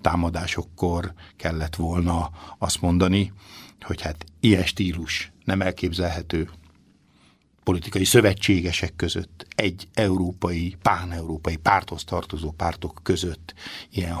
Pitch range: 85-95 Hz